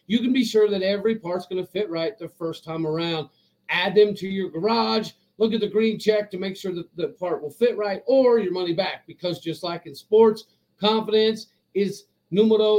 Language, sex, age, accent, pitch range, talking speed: English, male, 40-59, American, 165-210 Hz, 215 wpm